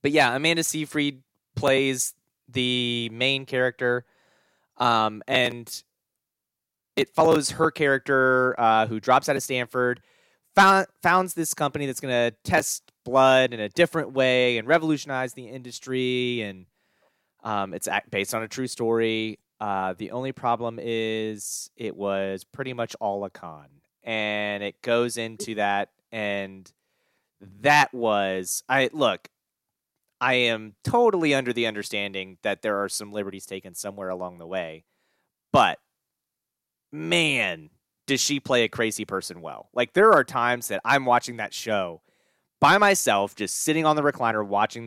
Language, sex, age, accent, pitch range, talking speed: English, male, 30-49, American, 105-135 Hz, 145 wpm